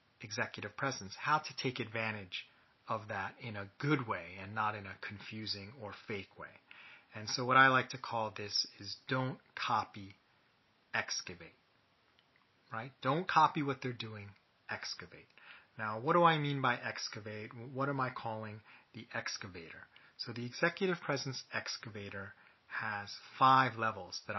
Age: 30-49